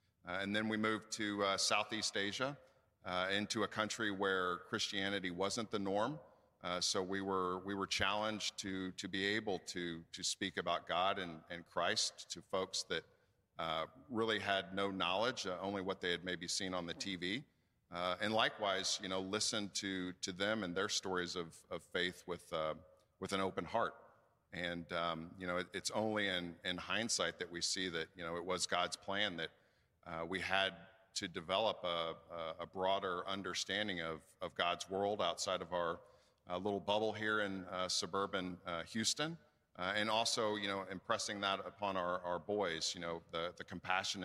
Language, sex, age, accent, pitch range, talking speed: English, male, 50-69, American, 90-105 Hz, 185 wpm